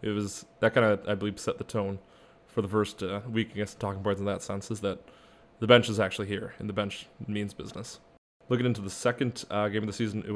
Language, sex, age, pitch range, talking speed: English, male, 20-39, 100-110 Hz, 255 wpm